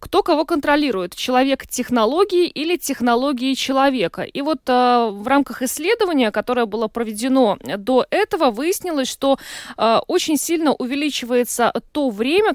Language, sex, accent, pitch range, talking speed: Russian, female, native, 215-280 Hz, 120 wpm